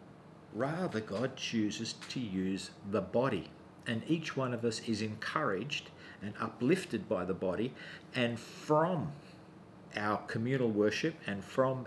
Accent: Australian